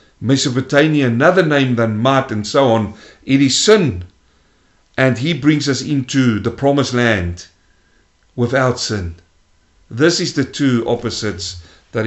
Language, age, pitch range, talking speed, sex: English, 50-69, 105-145 Hz, 135 wpm, male